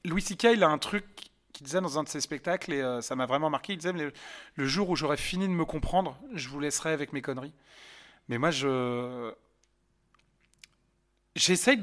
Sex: male